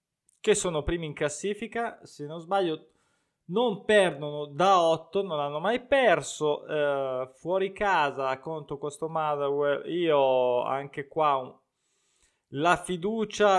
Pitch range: 140-180 Hz